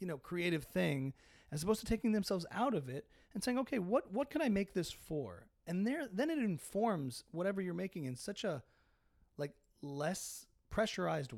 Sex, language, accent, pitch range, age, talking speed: male, English, American, 145-210 Hz, 30-49, 190 wpm